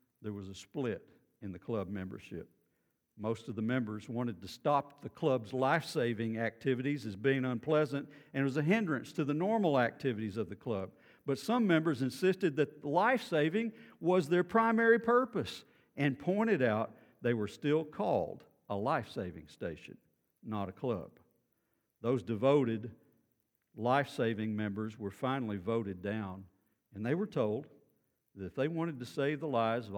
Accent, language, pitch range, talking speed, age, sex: American, English, 100-140 Hz, 155 wpm, 50-69, male